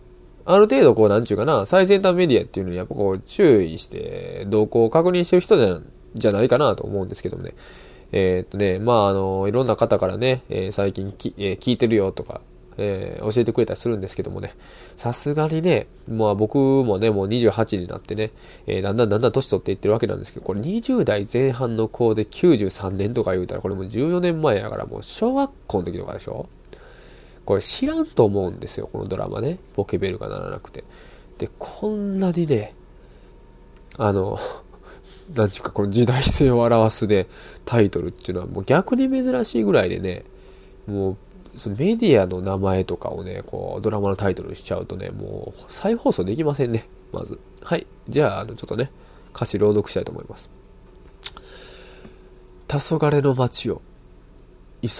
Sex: male